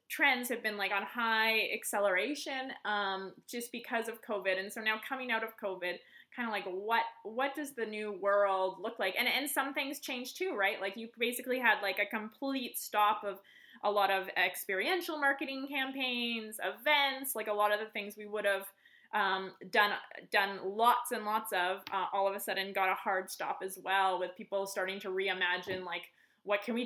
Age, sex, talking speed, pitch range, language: 20-39, female, 200 wpm, 195-250 Hz, English